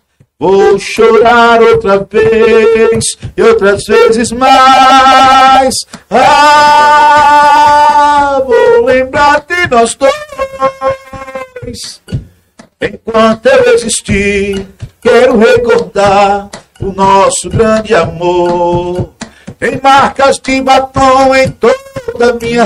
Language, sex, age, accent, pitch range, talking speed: Portuguese, male, 50-69, Brazilian, 205-270 Hz, 80 wpm